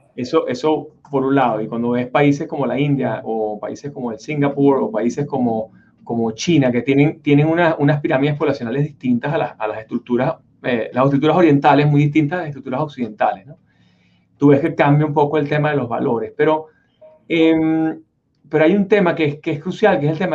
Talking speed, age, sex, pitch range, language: 195 wpm, 30-49, male, 135-160 Hz, Spanish